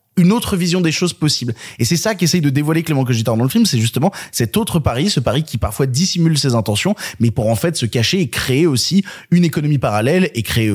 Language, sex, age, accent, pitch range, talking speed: French, male, 20-39, French, 115-175 Hz, 240 wpm